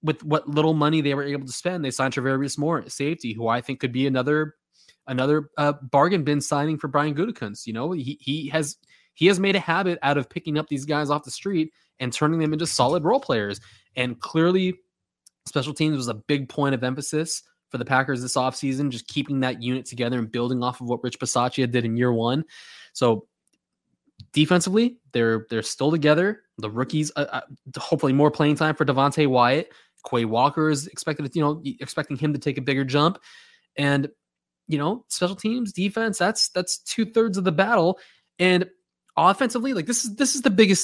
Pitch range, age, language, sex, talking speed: 130-170 Hz, 20-39, English, male, 200 wpm